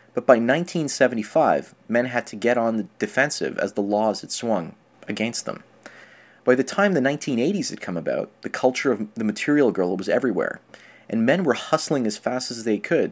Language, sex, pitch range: English, male, 105-140 Hz